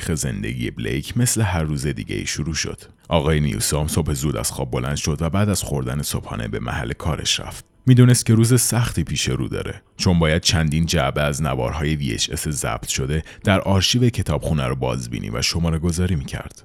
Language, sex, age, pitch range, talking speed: Persian, male, 30-49, 75-100 Hz, 185 wpm